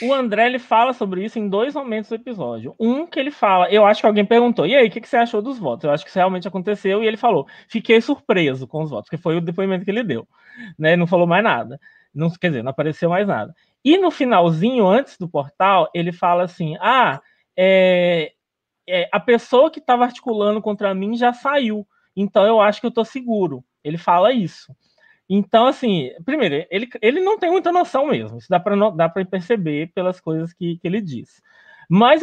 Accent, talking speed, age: Brazilian, 205 wpm, 20-39